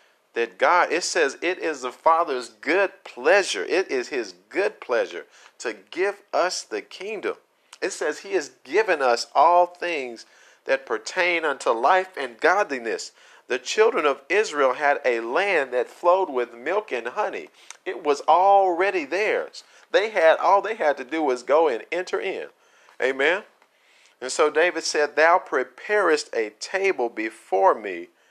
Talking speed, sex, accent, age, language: 155 wpm, male, American, 50-69, English